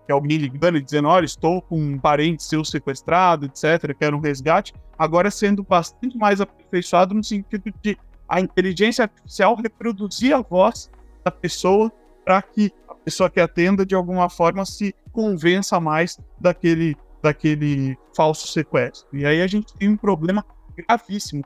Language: Portuguese